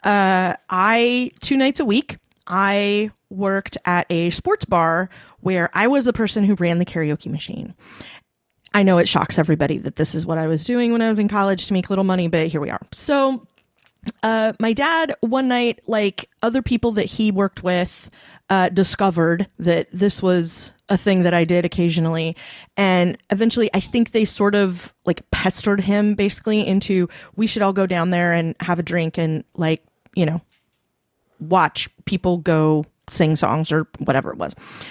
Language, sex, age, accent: English, female, 30-49, American